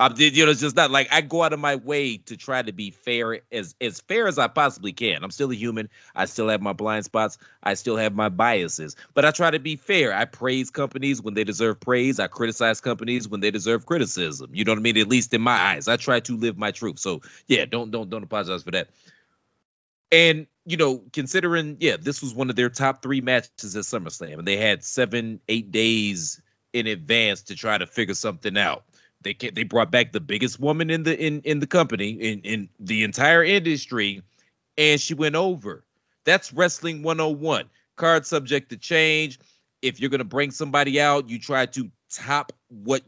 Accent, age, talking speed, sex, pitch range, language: American, 30-49, 215 wpm, male, 110-145 Hz, English